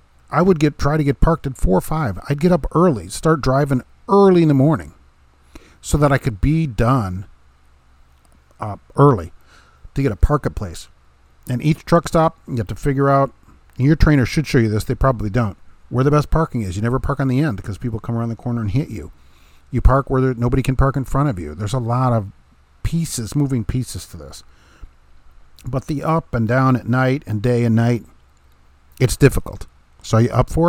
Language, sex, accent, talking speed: English, male, American, 215 wpm